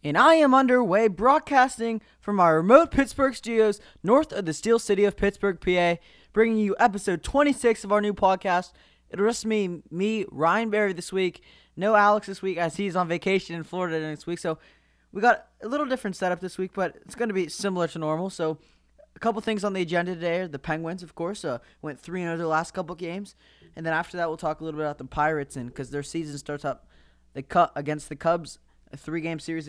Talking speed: 220 wpm